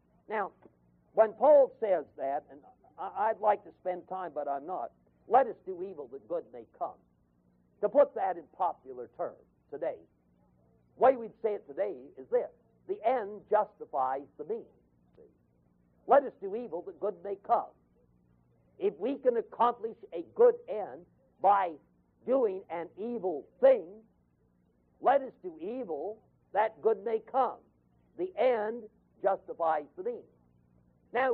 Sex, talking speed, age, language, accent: male, 145 wpm, 60-79, English, American